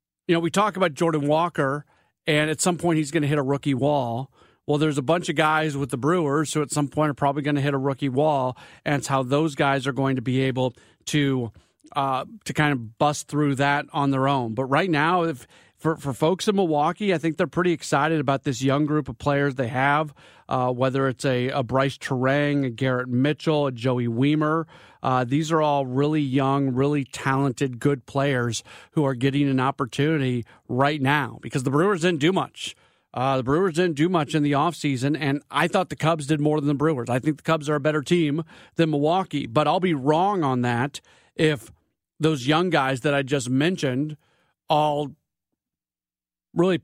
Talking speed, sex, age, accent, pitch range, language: 210 wpm, male, 40-59, American, 140-165 Hz, English